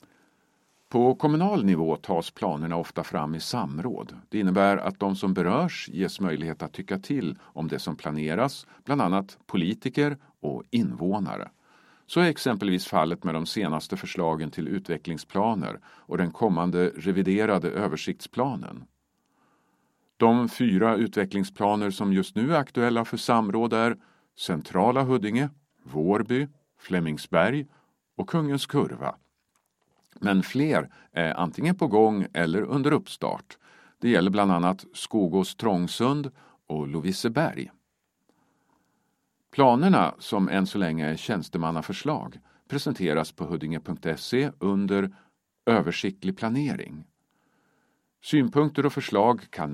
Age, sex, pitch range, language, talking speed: 50-69, male, 85-125 Hz, Swedish, 115 wpm